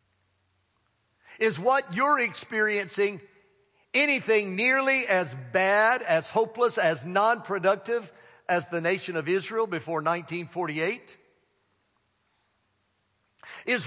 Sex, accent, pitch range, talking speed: male, American, 160-225 Hz, 85 wpm